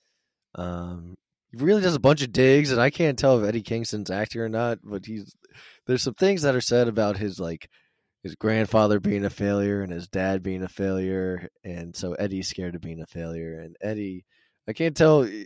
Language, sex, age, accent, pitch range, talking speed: English, male, 20-39, American, 95-115 Hz, 205 wpm